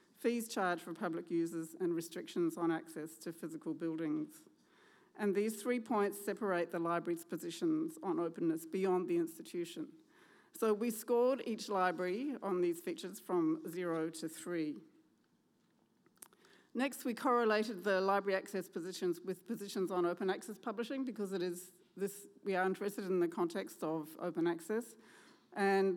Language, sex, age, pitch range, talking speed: English, female, 40-59, 175-215 Hz, 150 wpm